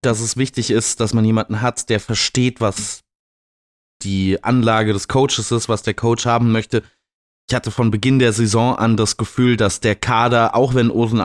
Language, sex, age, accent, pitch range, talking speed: German, male, 20-39, German, 110-130 Hz, 190 wpm